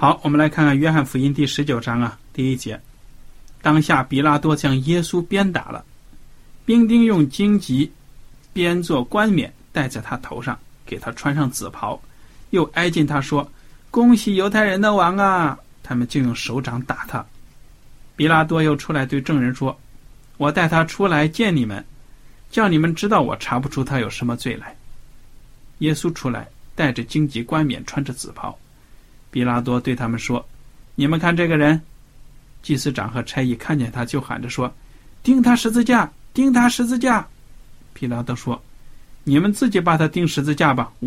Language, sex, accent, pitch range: Chinese, male, native, 125-175 Hz